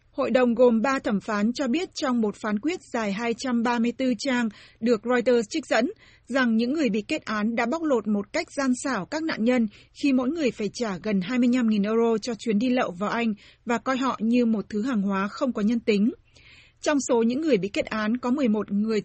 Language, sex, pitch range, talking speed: Vietnamese, female, 215-260 Hz, 225 wpm